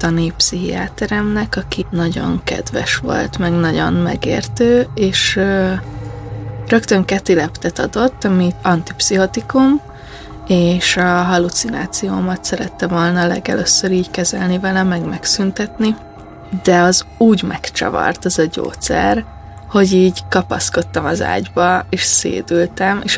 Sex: female